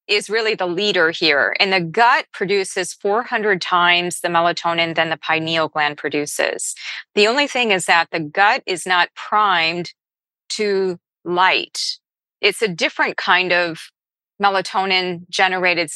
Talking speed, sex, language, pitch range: 135 wpm, female, English, 170-205 Hz